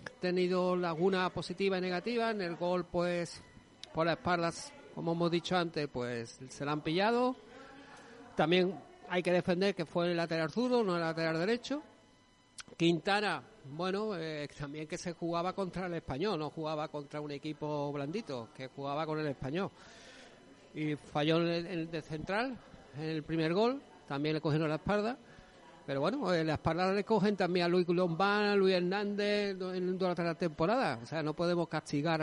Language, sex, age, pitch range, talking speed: Spanish, male, 60-79, 160-200 Hz, 175 wpm